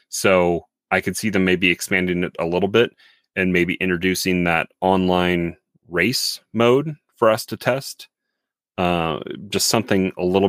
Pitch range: 90-110 Hz